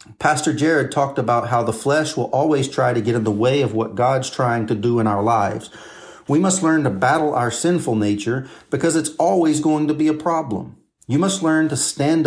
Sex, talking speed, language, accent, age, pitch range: male, 220 wpm, English, American, 40-59, 115-160 Hz